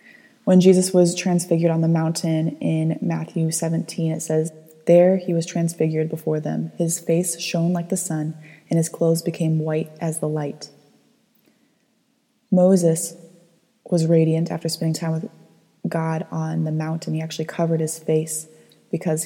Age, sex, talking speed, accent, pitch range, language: 20-39, female, 155 wpm, American, 160-180 Hz, English